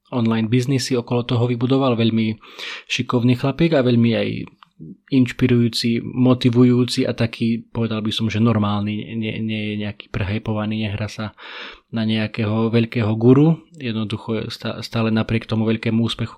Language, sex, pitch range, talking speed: Slovak, male, 110-125 Hz, 135 wpm